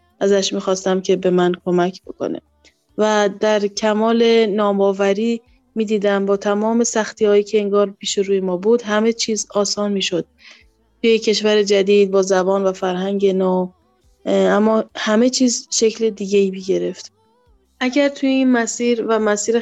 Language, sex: Persian, female